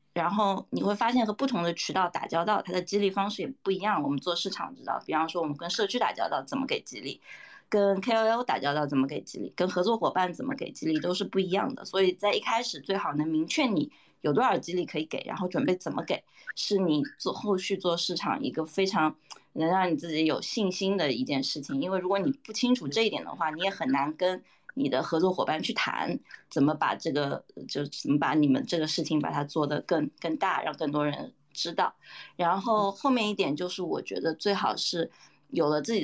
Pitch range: 165-215 Hz